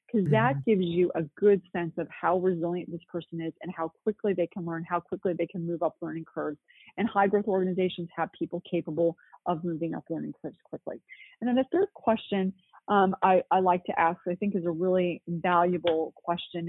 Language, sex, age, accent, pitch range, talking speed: English, female, 30-49, American, 165-195 Hz, 210 wpm